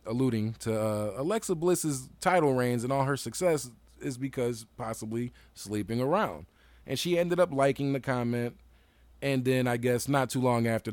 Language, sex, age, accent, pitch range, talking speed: English, male, 20-39, American, 110-150 Hz, 170 wpm